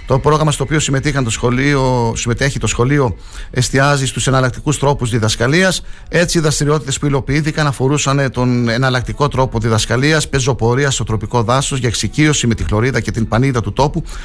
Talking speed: 160 wpm